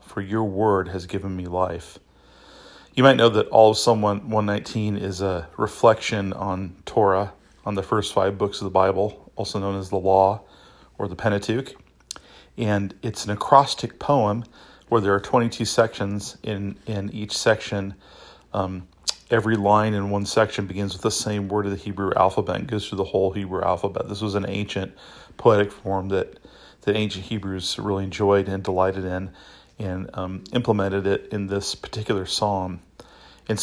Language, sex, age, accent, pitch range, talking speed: English, male, 40-59, American, 95-110 Hz, 170 wpm